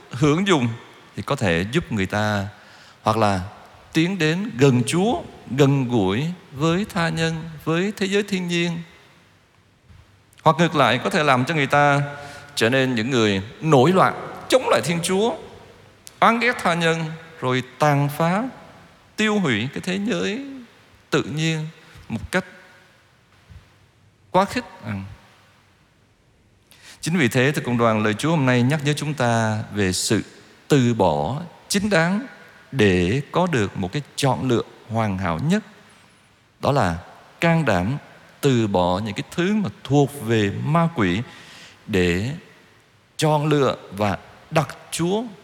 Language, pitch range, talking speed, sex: Vietnamese, 110-170 Hz, 145 wpm, male